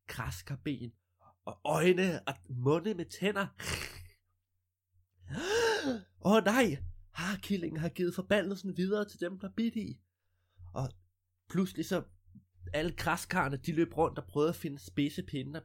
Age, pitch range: 20-39, 95-155 Hz